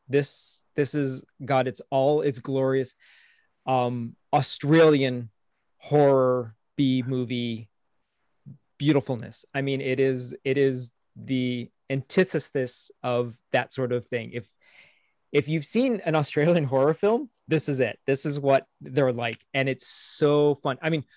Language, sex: English, male